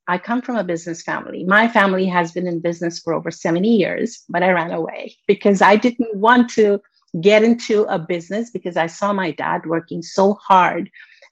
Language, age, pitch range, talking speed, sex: English, 50-69, 175-225 Hz, 195 wpm, female